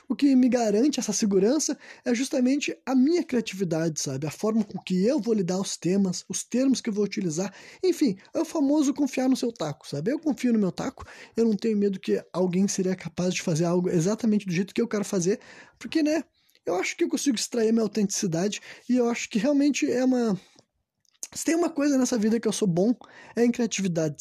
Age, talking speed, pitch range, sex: 20-39, 225 wpm, 180-245 Hz, male